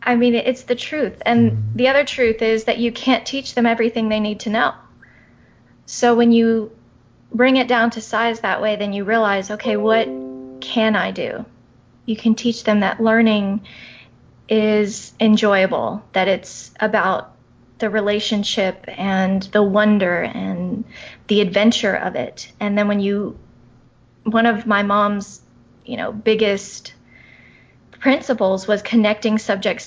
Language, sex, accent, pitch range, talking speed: English, female, American, 195-225 Hz, 150 wpm